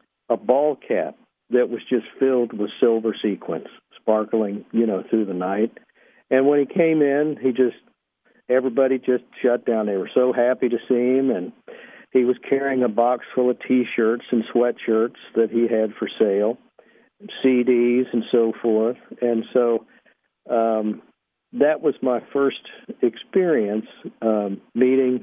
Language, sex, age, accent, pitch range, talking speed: English, male, 50-69, American, 115-130 Hz, 155 wpm